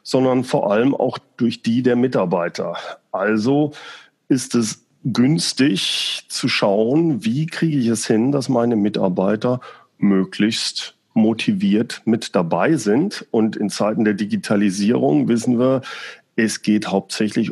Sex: male